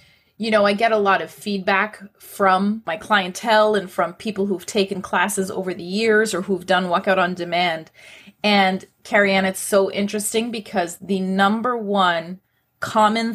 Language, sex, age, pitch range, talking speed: English, female, 30-49, 190-225 Hz, 160 wpm